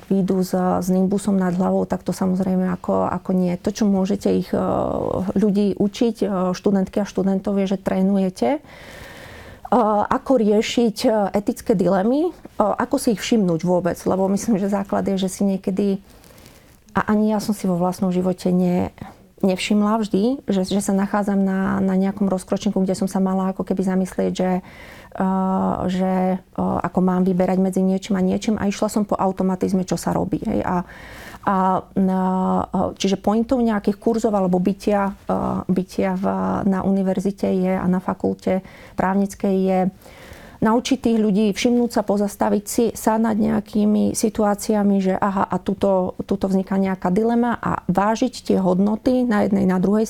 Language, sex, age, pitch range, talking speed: Slovak, female, 30-49, 185-210 Hz, 160 wpm